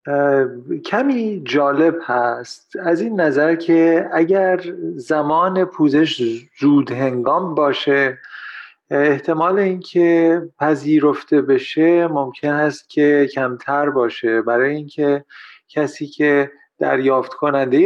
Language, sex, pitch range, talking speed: Persian, male, 140-175 Hz, 95 wpm